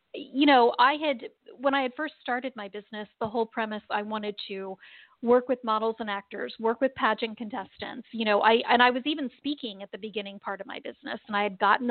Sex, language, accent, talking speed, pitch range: female, English, American, 225 wpm, 210-245 Hz